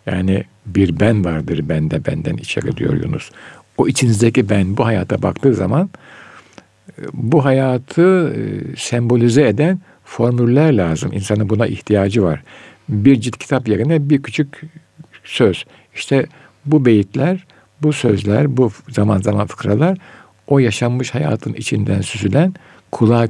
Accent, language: native, Turkish